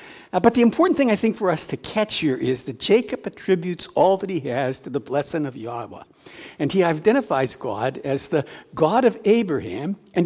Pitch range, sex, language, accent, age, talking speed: 150-230 Hz, male, English, American, 60-79, 205 wpm